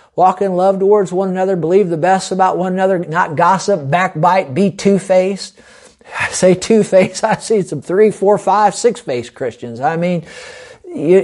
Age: 50-69